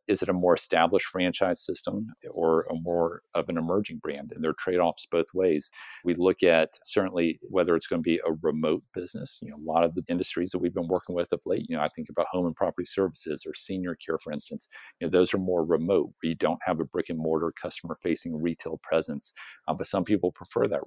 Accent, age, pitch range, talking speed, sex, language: American, 50-69, 85-95 Hz, 240 wpm, male, English